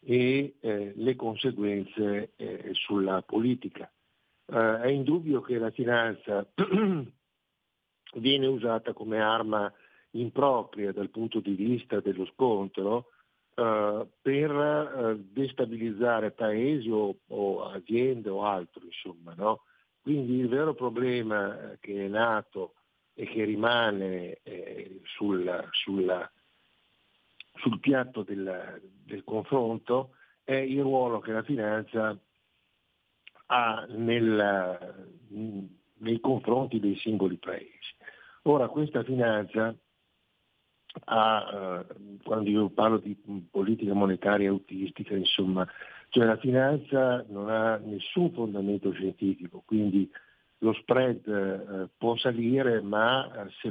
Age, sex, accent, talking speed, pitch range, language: 50-69, male, native, 105 wpm, 100-125 Hz, Italian